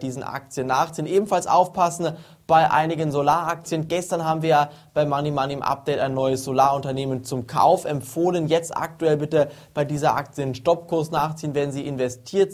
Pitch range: 135-160 Hz